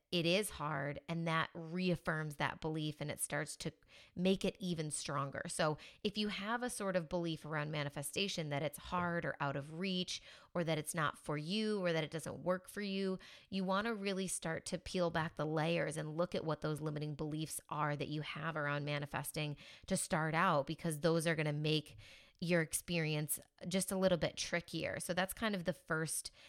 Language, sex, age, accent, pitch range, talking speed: English, female, 20-39, American, 155-185 Hz, 205 wpm